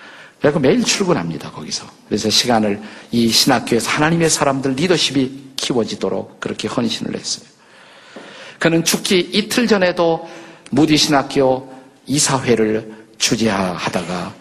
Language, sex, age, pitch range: Korean, male, 50-69, 125-170 Hz